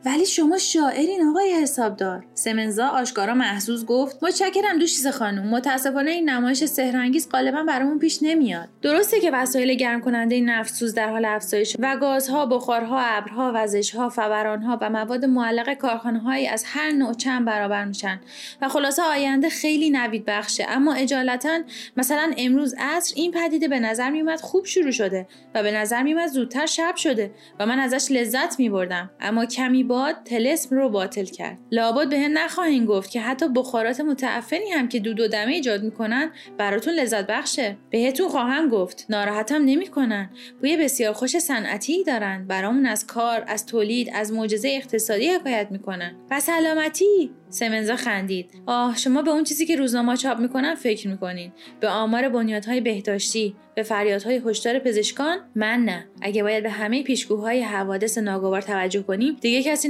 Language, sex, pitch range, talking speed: Persian, female, 215-285 Hz, 160 wpm